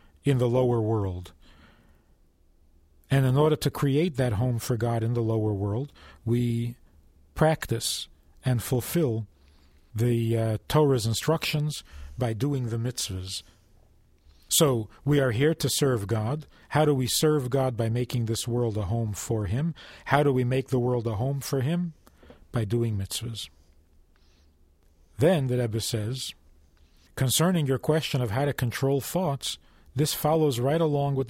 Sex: male